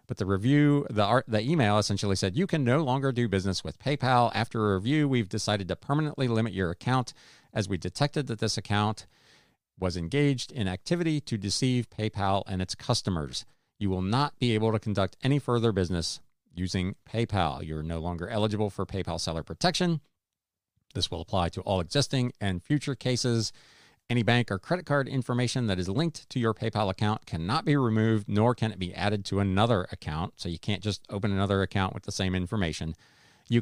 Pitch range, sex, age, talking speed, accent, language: 95-125 Hz, male, 40-59, 190 wpm, American, English